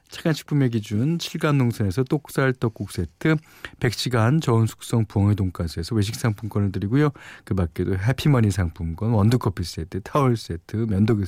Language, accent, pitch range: Korean, native, 100-150 Hz